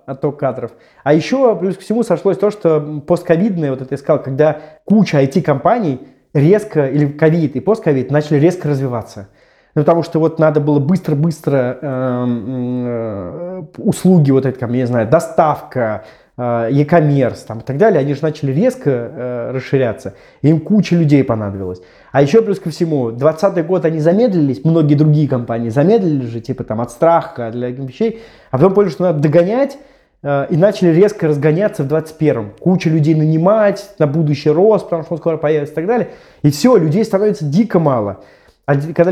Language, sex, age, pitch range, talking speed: Russian, male, 20-39, 140-185 Hz, 165 wpm